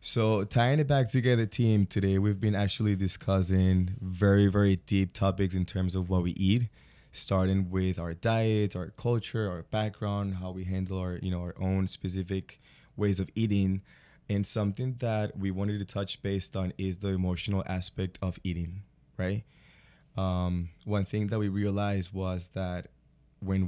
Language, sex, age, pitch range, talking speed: English, male, 20-39, 95-105 Hz, 165 wpm